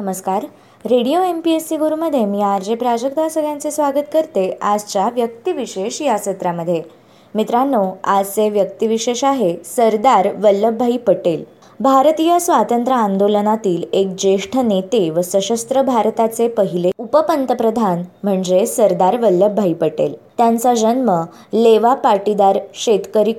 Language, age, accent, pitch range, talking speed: Marathi, 20-39, native, 195-260 Hz, 115 wpm